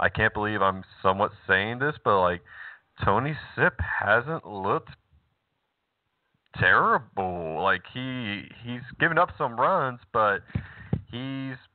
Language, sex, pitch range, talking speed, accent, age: English, male, 105-125 Hz, 115 wpm, American, 30-49